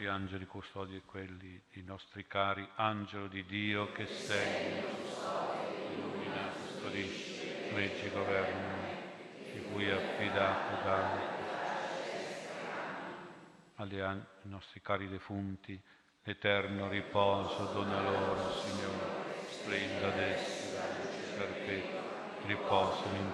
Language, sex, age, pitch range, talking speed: Italian, male, 50-69, 95-100 Hz, 100 wpm